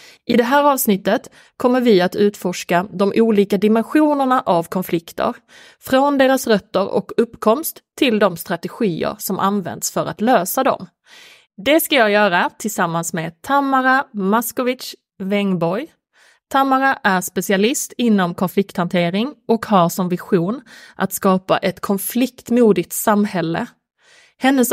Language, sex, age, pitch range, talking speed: Swedish, female, 30-49, 190-250 Hz, 120 wpm